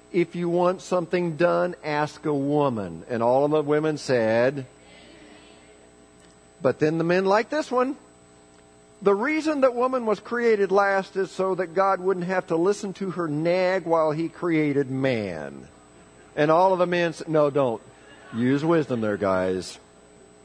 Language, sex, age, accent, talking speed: English, male, 50-69, American, 160 wpm